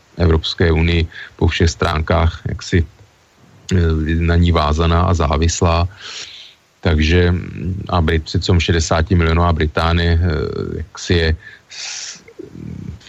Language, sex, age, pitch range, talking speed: Slovak, male, 30-49, 85-95 Hz, 95 wpm